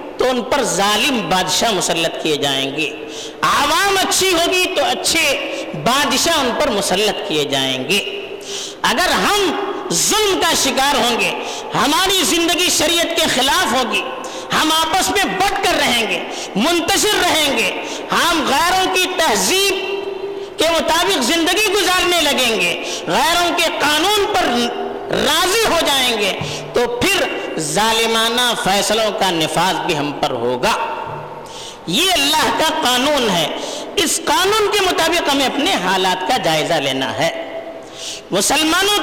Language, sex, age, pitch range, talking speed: Urdu, female, 50-69, 255-390 Hz, 135 wpm